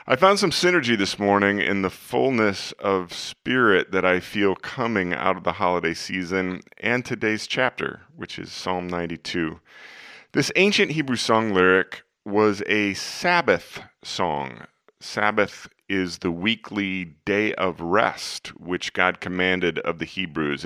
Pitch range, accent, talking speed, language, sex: 90-110 Hz, American, 140 wpm, English, male